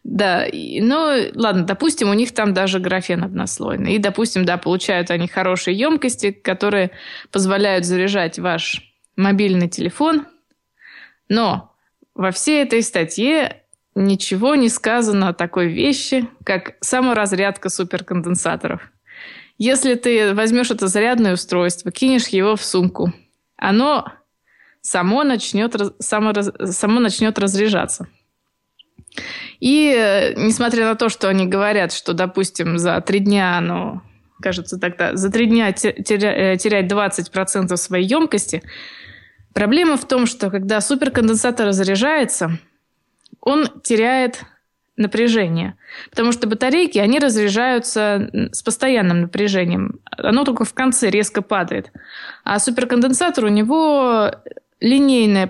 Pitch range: 190-245 Hz